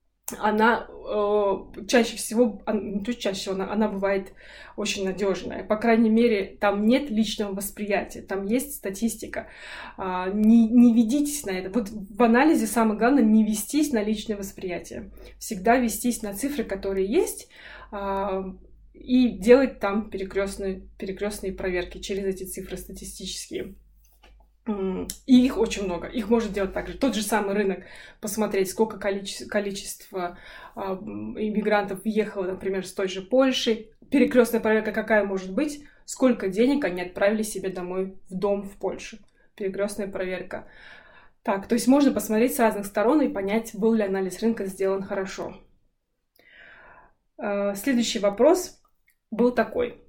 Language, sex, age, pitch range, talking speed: Russian, female, 20-39, 195-235 Hz, 140 wpm